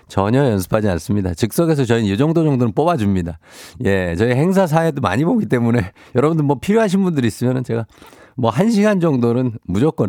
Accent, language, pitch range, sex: native, Korean, 100-135 Hz, male